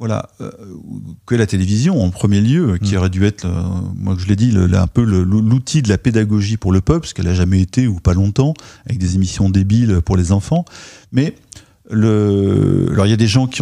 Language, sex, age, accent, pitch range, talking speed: French, male, 40-59, French, 100-130 Hz, 235 wpm